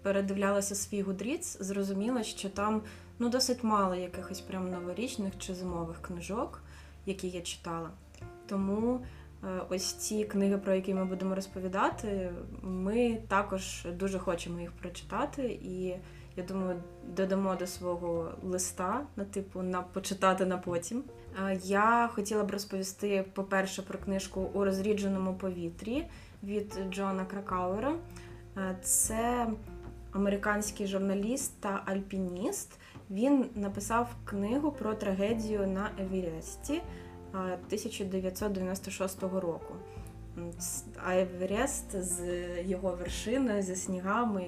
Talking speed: 110 wpm